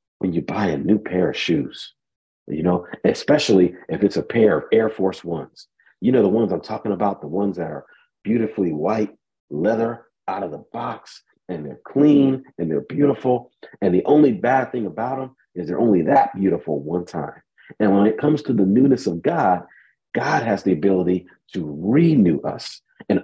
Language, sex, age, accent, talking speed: English, male, 50-69, American, 190 wpm